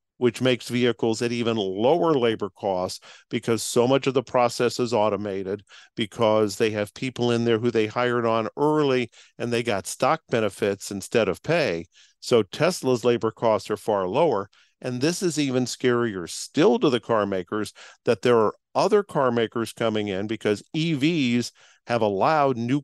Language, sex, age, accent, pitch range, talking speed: English, male, 50-69, American, 110-130 Hz, 170 wpm